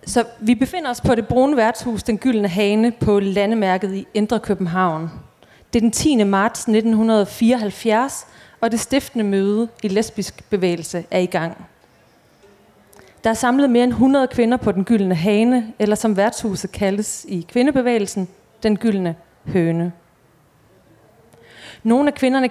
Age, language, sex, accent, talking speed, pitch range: 30-49, Danish, female, native, 145 wpm, 190-230 Hz